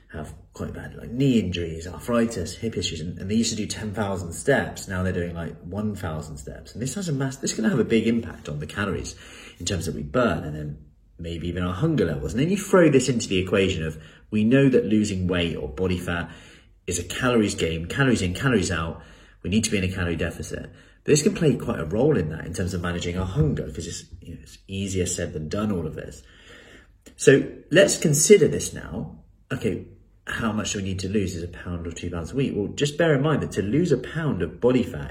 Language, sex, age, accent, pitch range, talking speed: English, male, 30-49, British, 85-110 Hz, 245 wpm